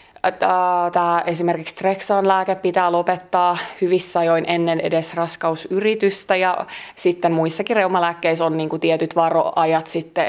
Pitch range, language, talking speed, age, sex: 170-190 Hz, Finnish, 110 wpm, 20-39, female